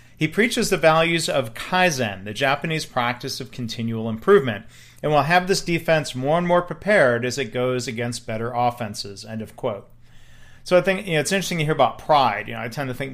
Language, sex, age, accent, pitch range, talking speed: English, male, 40-59, American, 120-155 Hz, 215 wpm